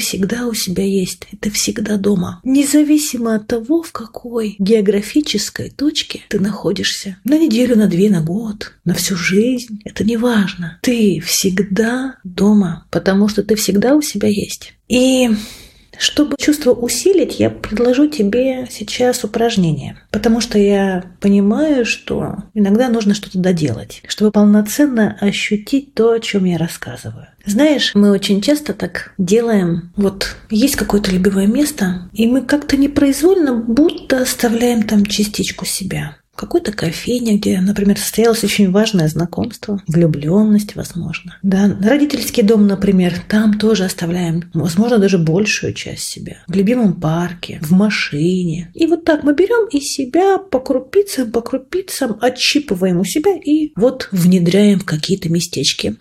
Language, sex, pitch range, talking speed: Russian, female, 195-245 Hz, 140 wpm